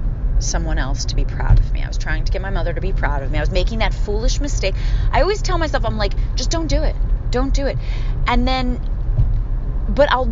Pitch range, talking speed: 120-155 Hz, 245 wpm